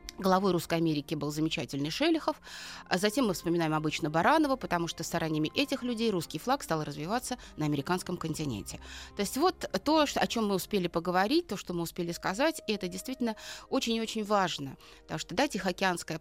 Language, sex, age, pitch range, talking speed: Russian, female, 30-49, 170-235 Hz, 180 wpm